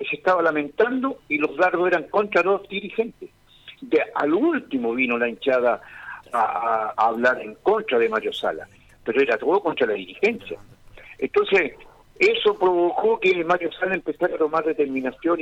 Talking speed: 155 wpm